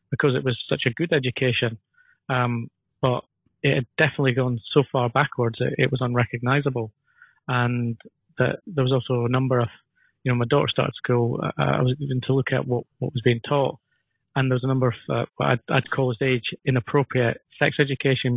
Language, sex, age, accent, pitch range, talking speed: English, male, 30-49, British, 120-135 Hz, 200 wpm